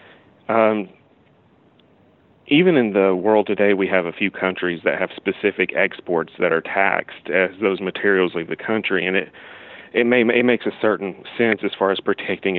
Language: English